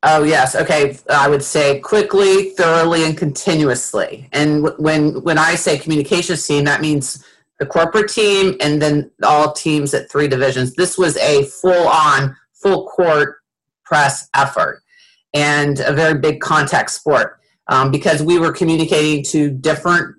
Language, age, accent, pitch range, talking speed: English, 40-59, American, 145-175 Hz, 150 wpm